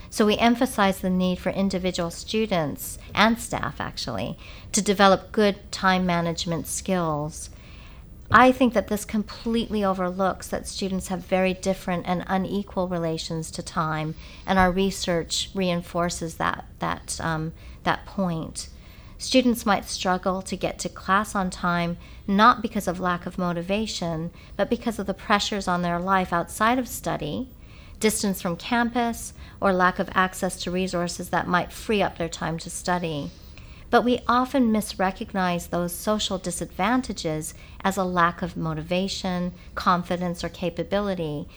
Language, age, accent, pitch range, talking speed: English, 50-69, American, 175-205 Hz, 145 wpm